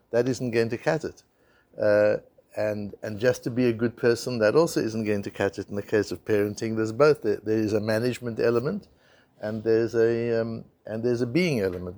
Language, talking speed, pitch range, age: English, 220 wpm, 110-130 Hz, 60-79